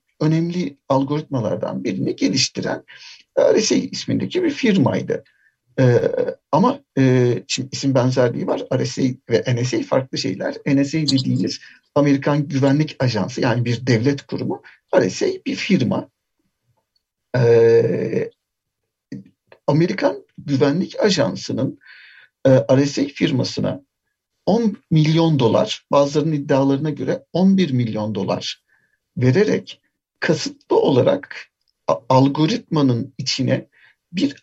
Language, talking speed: Turkish, 95 wpm